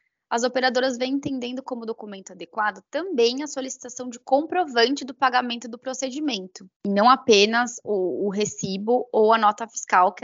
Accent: Brazilian